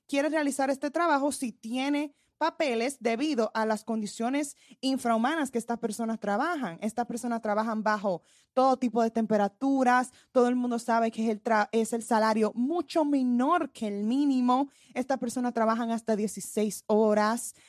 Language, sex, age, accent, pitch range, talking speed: Spanish, female, 20-39, American, 225-300 Hz, 150 wpm